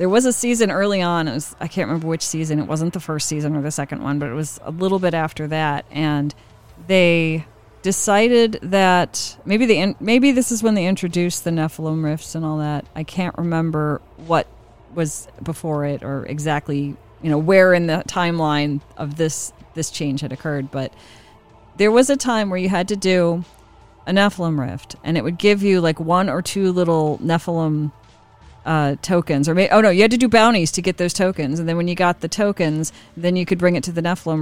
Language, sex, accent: English, female, American